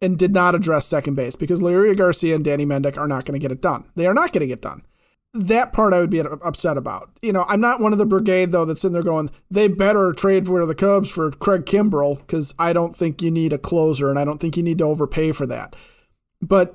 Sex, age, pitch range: male, 40-59, 160-200 Hz